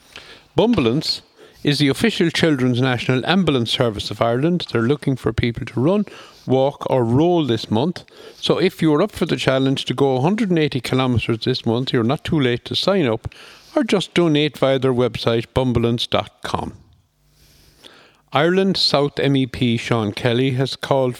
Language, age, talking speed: English, 60-79, 155 wpm